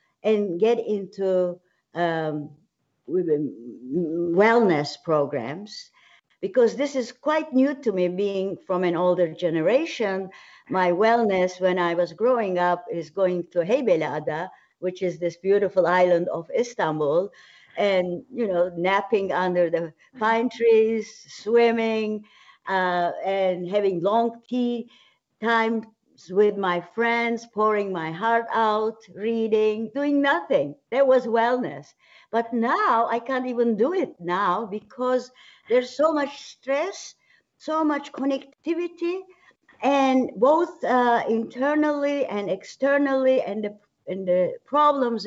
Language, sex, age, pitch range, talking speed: English, female, 60-79, 185-265 Hz, 120 wpm